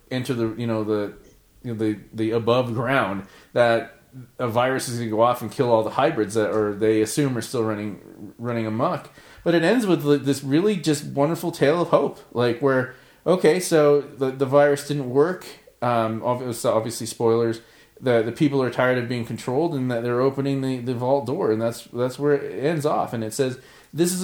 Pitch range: 115-145 Hz